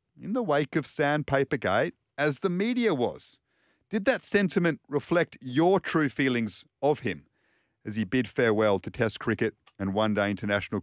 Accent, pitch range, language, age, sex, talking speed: Australian, 115-165 Hz, English, 40-59, male, 160 wpm